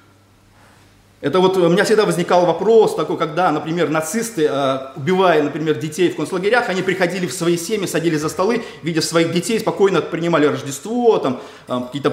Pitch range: 150-195 Hz